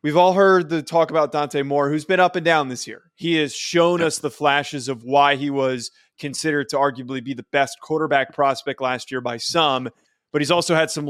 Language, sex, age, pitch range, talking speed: English, male, 20-39, 135-155 Hz, 225 wpm